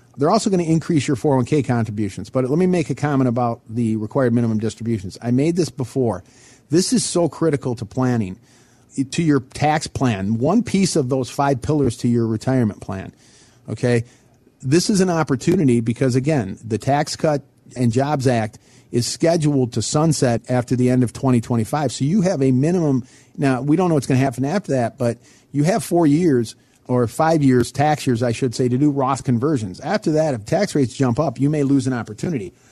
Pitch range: 125-155 Hz